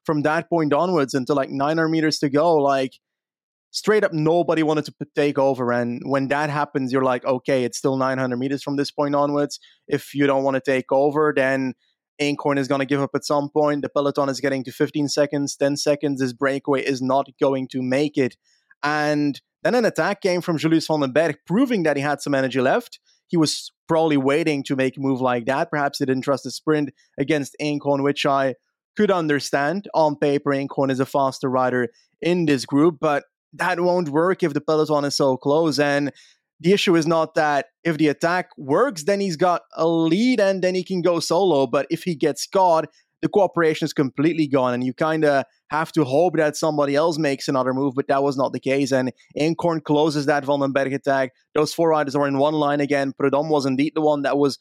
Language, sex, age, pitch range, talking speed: English, male, 20-39, 135-160 Hz, 215 wpm